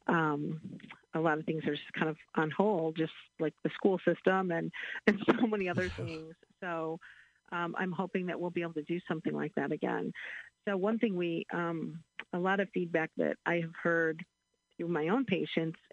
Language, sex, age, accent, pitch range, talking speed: English, female, 50-69, American, 160-185 Hz, 200 wpm